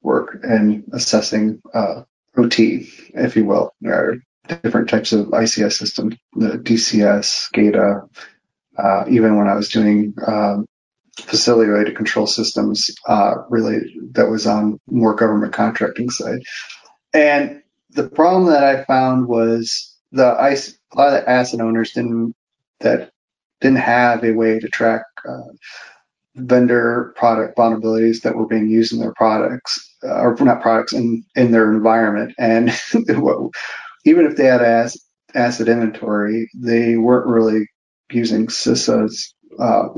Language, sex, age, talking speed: English, male, 30-49, 140 wpm